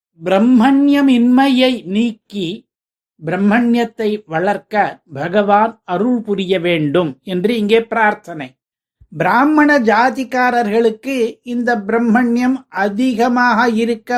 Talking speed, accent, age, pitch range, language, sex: 70 wpm, native, 50-69, 205-255 Hz, Tamil, male